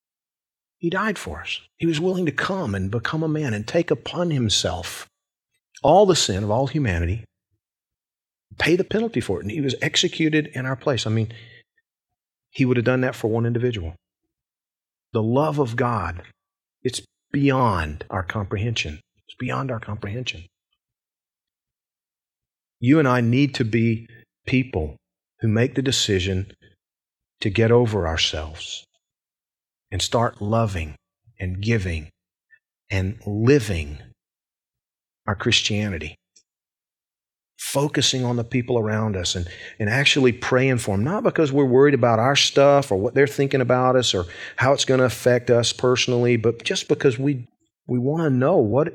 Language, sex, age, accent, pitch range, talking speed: English, male, 40-59, American, 100-135 Hz, 150 wpm